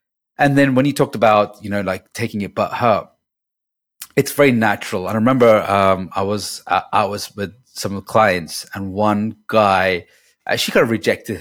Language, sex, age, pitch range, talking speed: English, male, 30-49, 100-140 Hz, 200 wpm